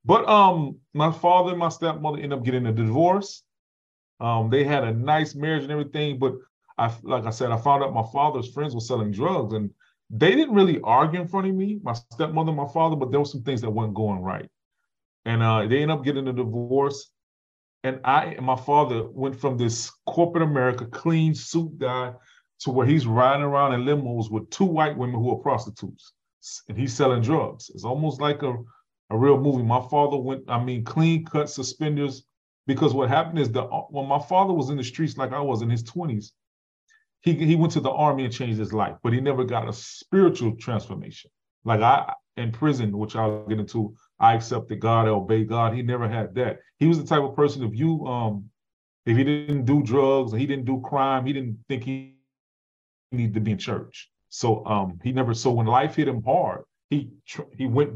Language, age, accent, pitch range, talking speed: English, 30-49, American, 115-150 Hz, 205 wpm